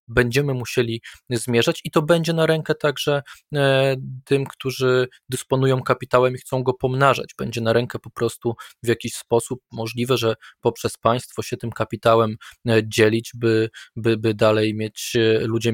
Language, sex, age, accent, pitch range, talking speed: Polish, male, 20-39, native, 110-125 Hz, 150 wpm